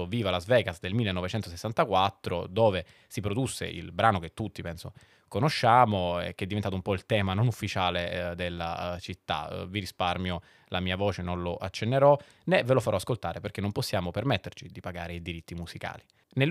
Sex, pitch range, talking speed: male, 90-120 Hz, 180 wpm